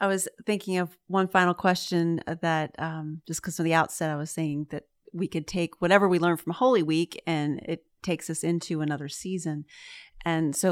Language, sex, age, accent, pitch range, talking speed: English, female, 30-49, American, 165-195 Hz, 200 wpm